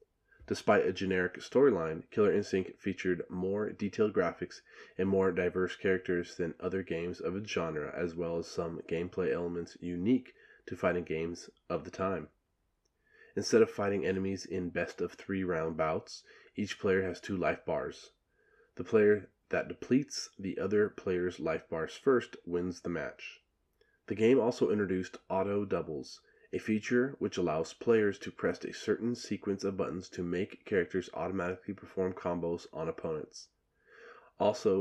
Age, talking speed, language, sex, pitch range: 20-39, 150 wpm, English, male, 90-105 Hz